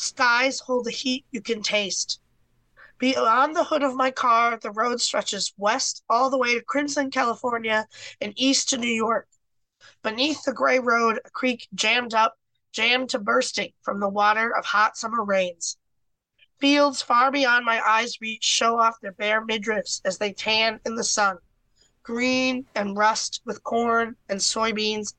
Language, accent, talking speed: English, American, 165 wpm